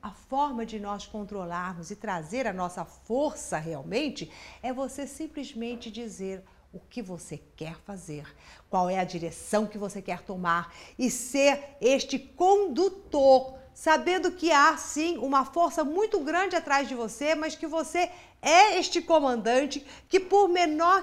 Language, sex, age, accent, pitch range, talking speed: Portuguese, female, 50-69, Brazilian, 205-315 Hz, 150 wpm